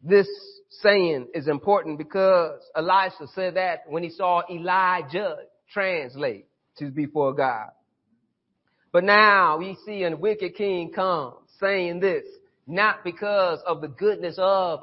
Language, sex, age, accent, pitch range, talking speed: English, male, 30-49, American, 165-205 Hz, 130 wpm